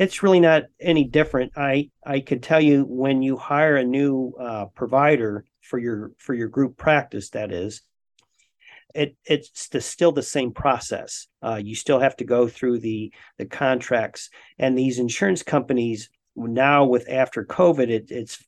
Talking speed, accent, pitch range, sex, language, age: 170 wpm, American, 115-140 Hz, male, English, 40-59